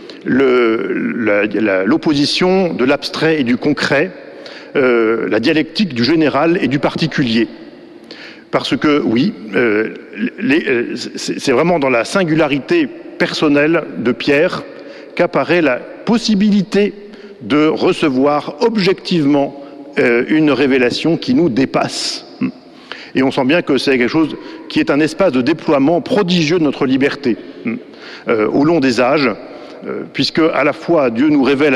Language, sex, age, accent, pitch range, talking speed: French, male, 50-69, French, 135-210 Hz, 130 wpm